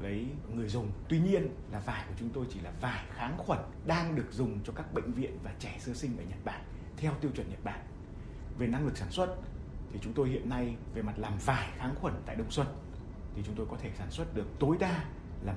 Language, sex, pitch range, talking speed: Vietnamese, male, 105-150 Hz, 245 wpm